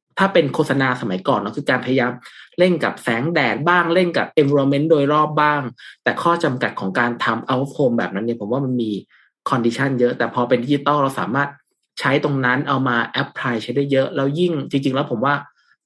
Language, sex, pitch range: Thai, male, 125-155 Hz